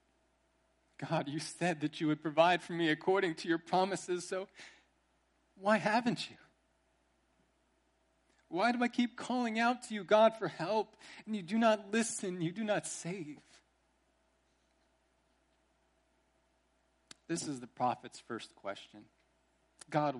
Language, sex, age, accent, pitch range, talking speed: English, male, 40-59, American, 115-190 Hz, 130 wpm